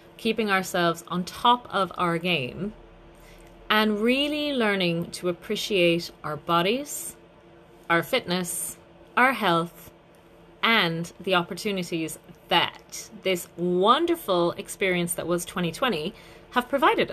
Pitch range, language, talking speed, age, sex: 175-235 Hz, English, 105 wpm, 30-49, female